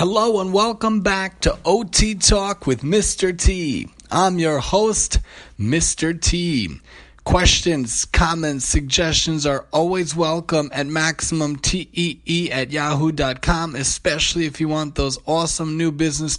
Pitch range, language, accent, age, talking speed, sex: 135-175 Hz, English, American, 30-49, 120 wpm, male